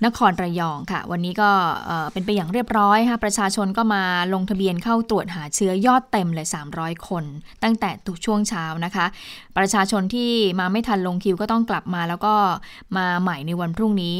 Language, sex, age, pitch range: Thai, female, 20-39, 180-215 Hz